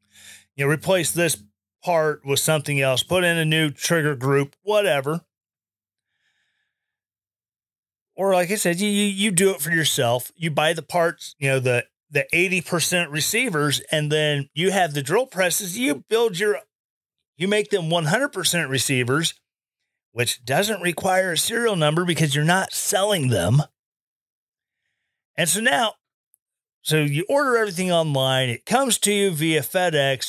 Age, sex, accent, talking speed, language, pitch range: 30-49, male, American, 150 wpm, English, 140-190 Hz